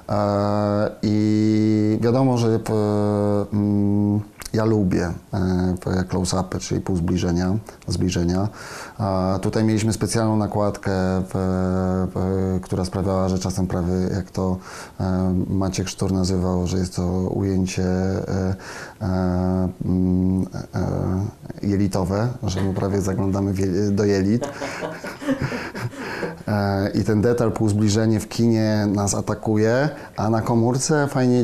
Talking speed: 90 wpm